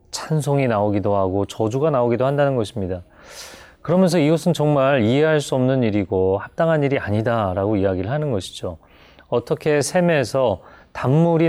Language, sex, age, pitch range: Korean, male, 30-49, 105-155 Hz